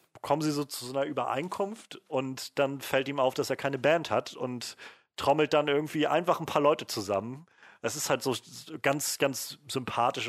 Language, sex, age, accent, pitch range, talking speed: German, male, 40-59, German, 110-135 Hz, 190 wpm